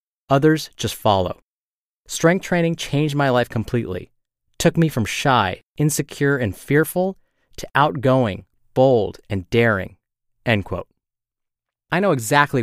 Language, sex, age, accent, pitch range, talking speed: English, male, 30-49, American, 110-150 Hz, 125 wpm